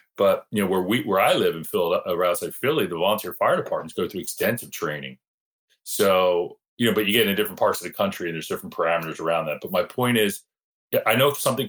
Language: English